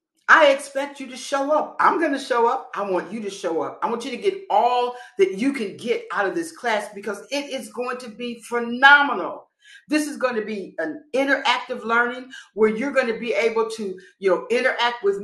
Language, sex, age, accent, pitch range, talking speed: English, female, 50-69, American, 220-310 Hz, 225 wpm